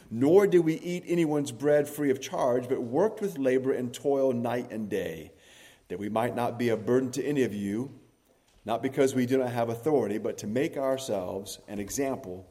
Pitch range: 115-145 Hz